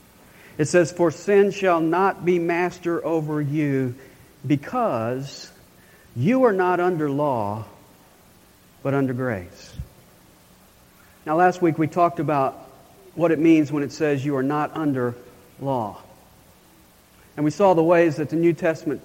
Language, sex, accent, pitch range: English, male, American, 140-180 Hz